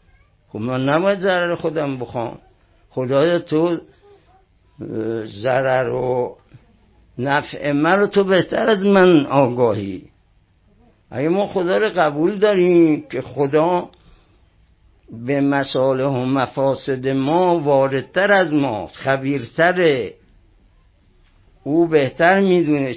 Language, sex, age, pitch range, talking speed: Persian, male, 60-79, 115-170 Hz, 100 wpm